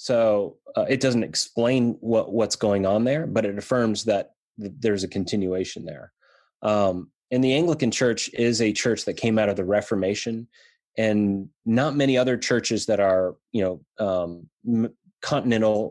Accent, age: American, 20-39